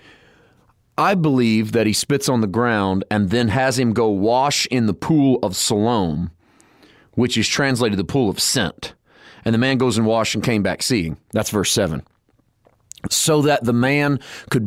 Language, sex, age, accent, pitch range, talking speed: English, male, 40-59, American, 105-125 Hz, 180 wpm